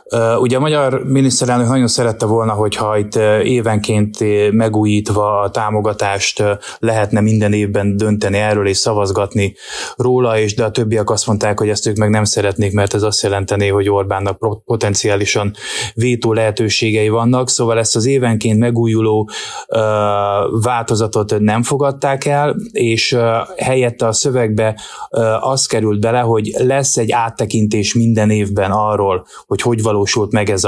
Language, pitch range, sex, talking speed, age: Hungarian, 105-120 Hz, male, 140 wpm, 20-39